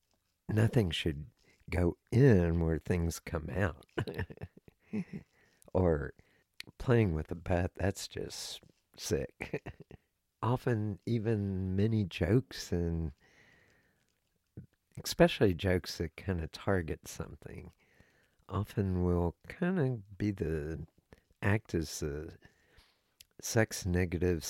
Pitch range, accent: 85-110 Hz, American